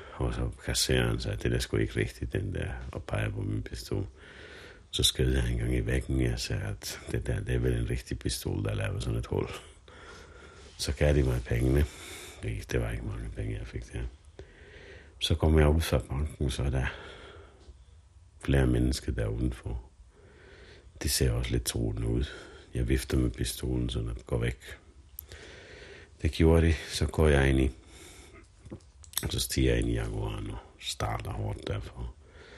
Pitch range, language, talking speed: 65-90 Hz, Danish, 180 wpm